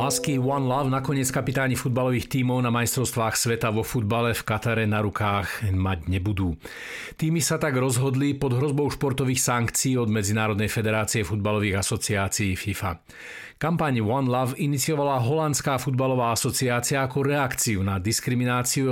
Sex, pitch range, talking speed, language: male, 110-135 Hz, 135 wpm, Slovak